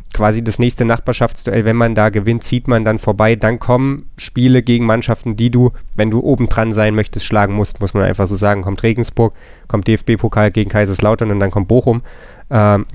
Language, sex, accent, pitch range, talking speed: German, male, German, 110-125 Hz, 200 wpm